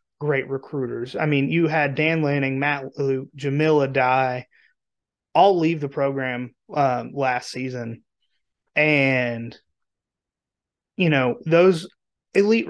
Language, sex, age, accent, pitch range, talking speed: English, male, 30-49, American, 135-160 Hz, 115 wpm